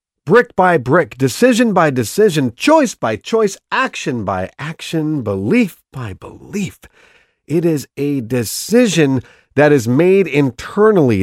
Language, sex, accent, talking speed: English, male, American, 125 wpm